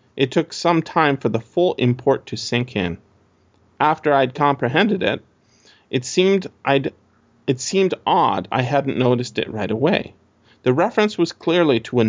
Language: English